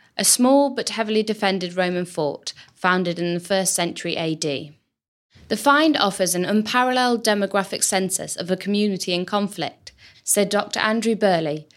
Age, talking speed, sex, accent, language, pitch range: 10-29, 150 wpm, female, British, English, 180-235 Hz